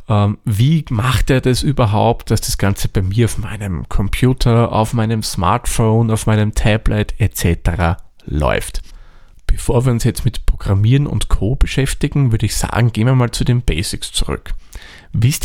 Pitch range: 95-125 Hz